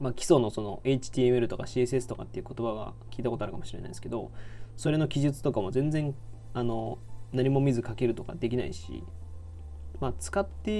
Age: 20-39